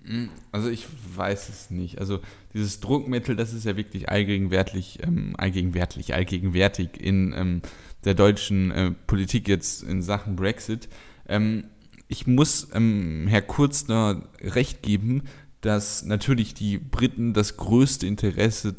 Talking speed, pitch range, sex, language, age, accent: 130 wpm, 95-110 Hz, male, German, 10-29, German